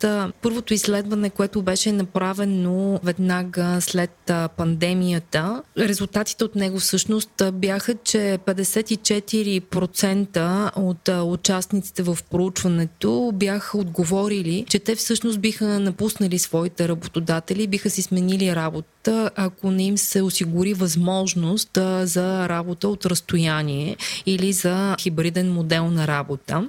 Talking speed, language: 110 wpm, Bulgarian